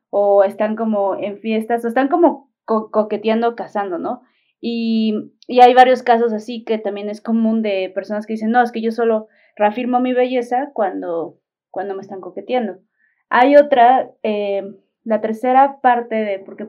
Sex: female